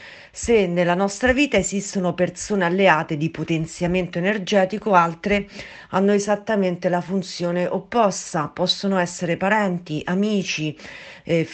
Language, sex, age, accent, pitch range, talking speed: Italian, female, 40-59, native, 175-205 Hz, 110 wpm